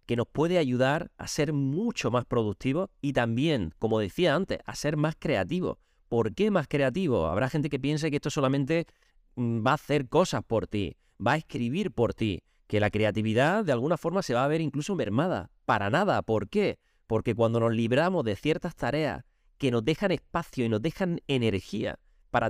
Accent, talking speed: Spanish, 190 wpm